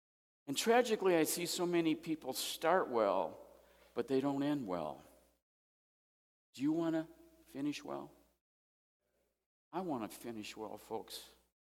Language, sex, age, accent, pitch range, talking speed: English, male, 50-69, American, 95-125 Hz, 130 wpm